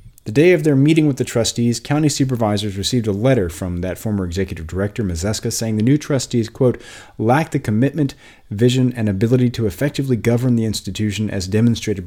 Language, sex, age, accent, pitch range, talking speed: English, male, 40-59, American, 100-140 Hz, 185 wpm